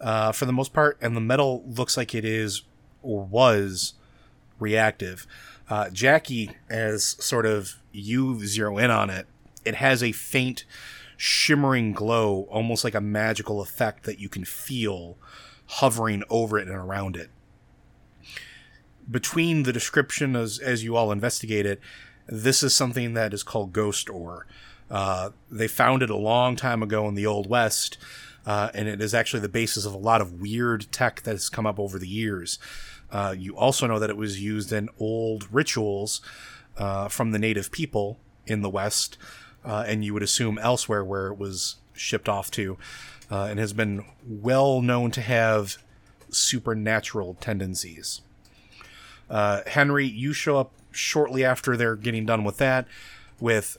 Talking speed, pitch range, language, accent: 165 wpm, 105-125 Hz, English, American